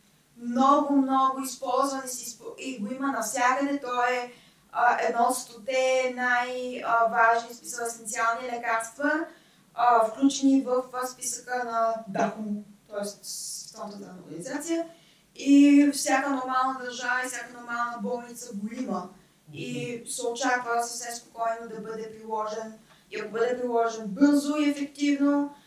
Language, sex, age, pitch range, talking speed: Bulgarian, female, 20-39, 230-275 Hz, 120 wpm